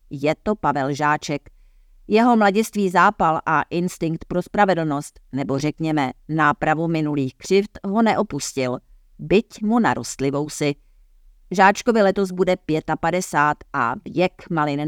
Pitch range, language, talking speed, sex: 145-180 Hz, Czech, 115 wpm, female